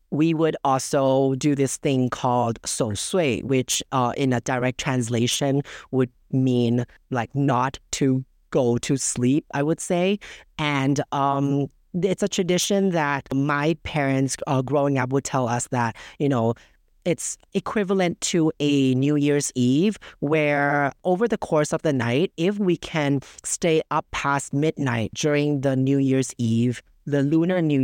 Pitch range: 130-155 Hz